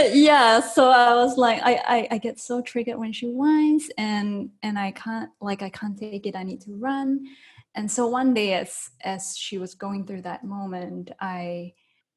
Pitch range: 180-240 Hz